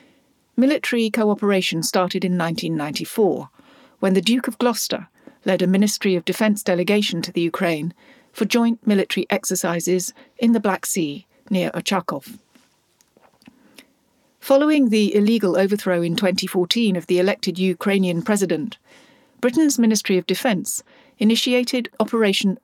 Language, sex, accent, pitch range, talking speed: English, female, British, 185-245 Hz, 120 wpm